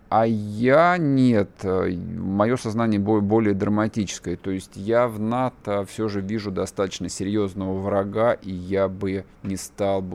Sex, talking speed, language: male, 140 wpm, Russian